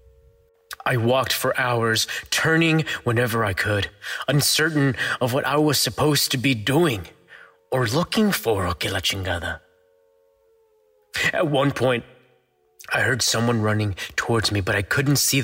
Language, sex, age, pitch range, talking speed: English, male, 20-39, 90-140 Hz, 130 wpm